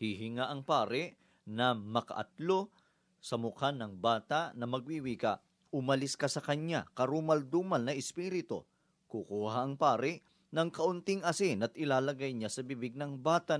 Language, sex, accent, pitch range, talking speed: Filipino, male, native, 125-160 Hz, 140 wpm